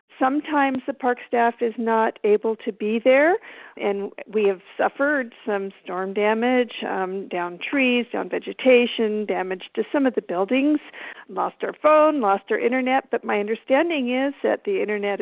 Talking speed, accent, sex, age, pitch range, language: 160 wpm, American, female, 50-69, 195-255 Hz, English